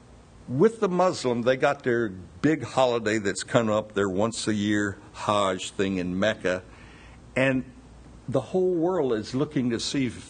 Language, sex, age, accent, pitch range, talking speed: English, male, 60-79, American, 105-145 Hz, 150 wpm